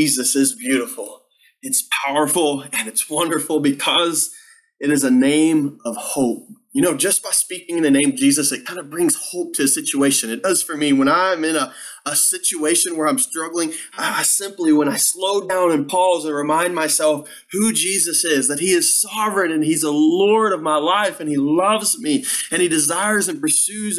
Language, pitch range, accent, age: English, 150-240 Hz, American, 20-39